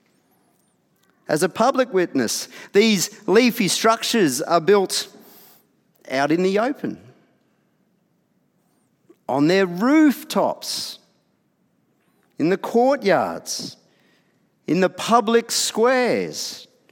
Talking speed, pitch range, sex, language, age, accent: 80 wpm, 180-245 Hz, male, English, 50-69, Australian